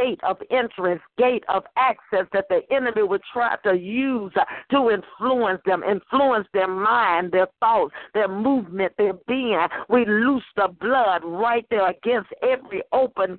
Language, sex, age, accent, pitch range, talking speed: English, female, 60-79, American, 195-260 Hz, 150 wpm